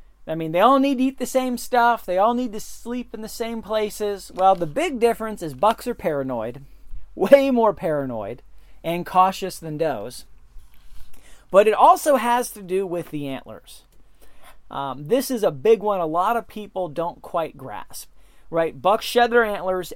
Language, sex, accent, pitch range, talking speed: English, male, American, 150-205 Hz, 185 wpm